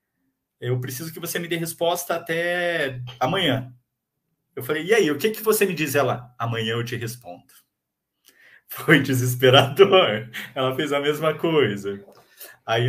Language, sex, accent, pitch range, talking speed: Portuguese, male, Brazilian, 125-175 Hz, 150 wpm